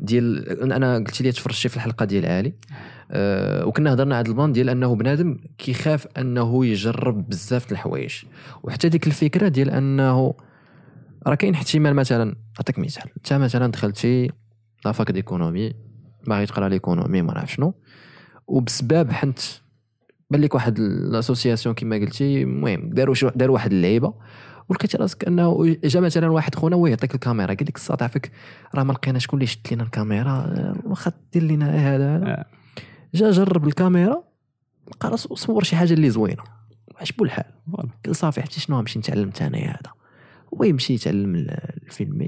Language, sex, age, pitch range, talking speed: Arabic, male, 20-39, 120-160 Hz, 150 wpm